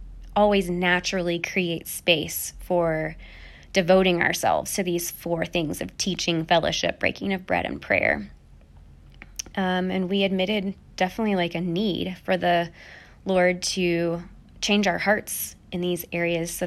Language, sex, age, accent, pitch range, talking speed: English, female, 20-39, American, 170-200 Hz, 135 wpm